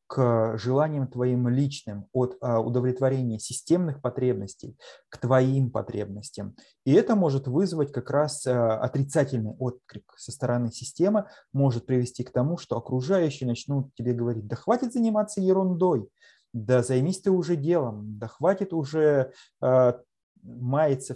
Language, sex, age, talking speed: Russian, male, 20-39, 125 wpm